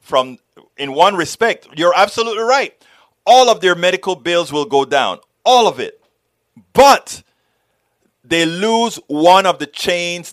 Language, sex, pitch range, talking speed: English, male, 135-200 Hz, 145 wpm